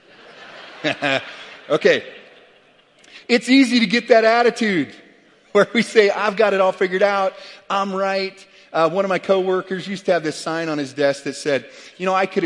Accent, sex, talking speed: American, male, 180 wpm